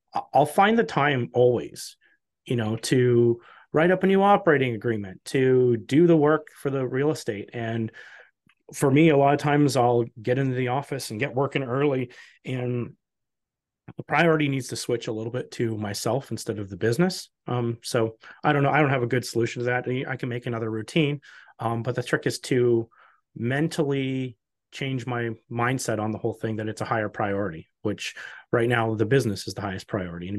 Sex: male